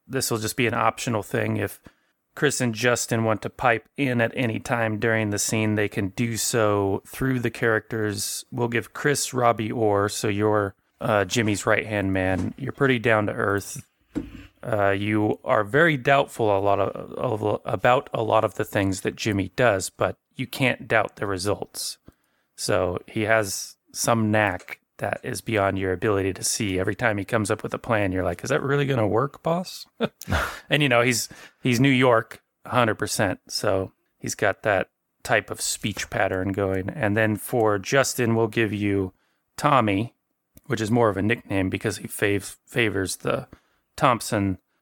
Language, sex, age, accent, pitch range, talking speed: English, male, 30-49, American, 100-120 Hz, 175 wpm